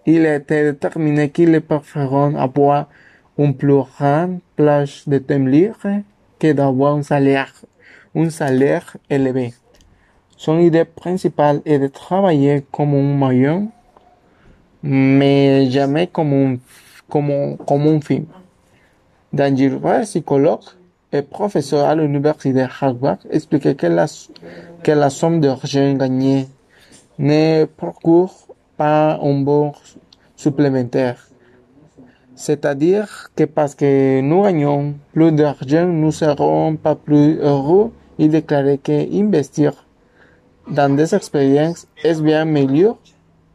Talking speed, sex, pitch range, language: 115 wpm, male, 135-155 Hz, French